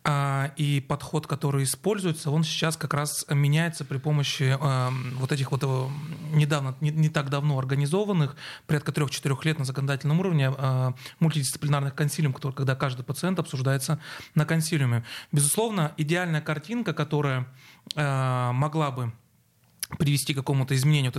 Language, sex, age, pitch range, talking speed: Russian, male, 30-49, 140-160 Hz, 125 wpm